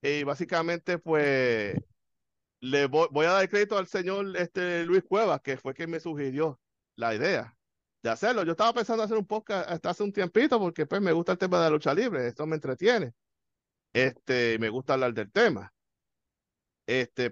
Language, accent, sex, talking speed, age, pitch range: Spanish, Venezuelan, male, 185 wpm, 50-69, 130-170 Hz